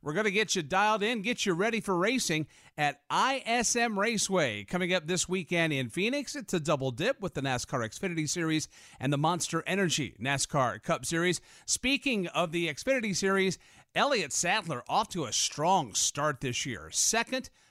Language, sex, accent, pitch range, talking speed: English, male, American, 150-215 Hz, 175 wpm